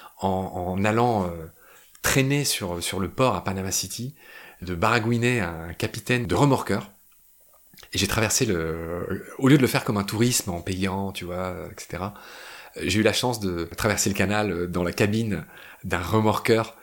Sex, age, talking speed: male, 30-49, 160 wpm